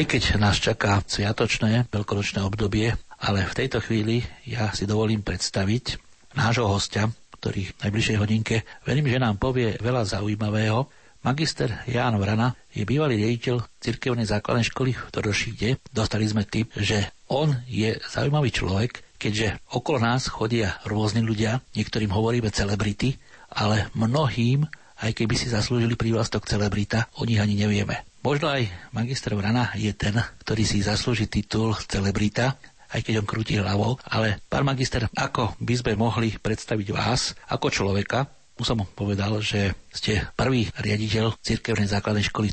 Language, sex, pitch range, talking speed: Slovak, male, 105-120 Hz, 145 wpm